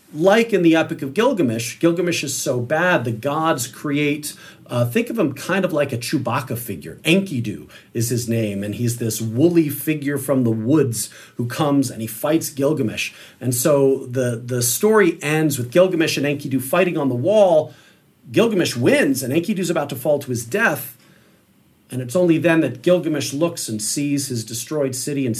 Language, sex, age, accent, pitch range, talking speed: English, male, 40-59, American, 115-155 Hz, 185 wpm